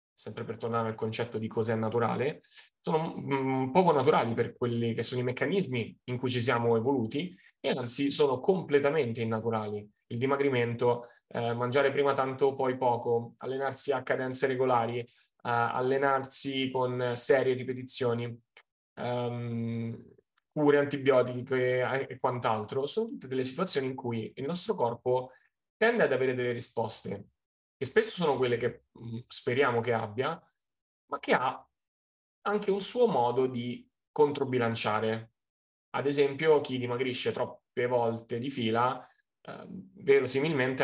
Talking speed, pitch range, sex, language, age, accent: 130 wpm, 115-135 Hz, male, Italian, 20-39, native